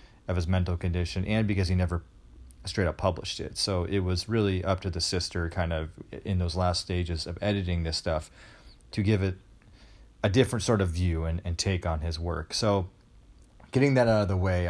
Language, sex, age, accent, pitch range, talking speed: English, male, 30-49, American, 85-100 Hz, 210 wpm